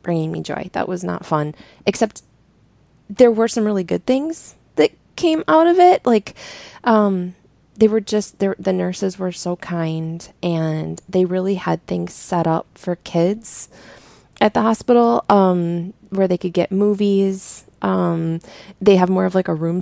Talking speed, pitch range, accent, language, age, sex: 165 wpm, 165-210 Hz, American, English, 20-39, female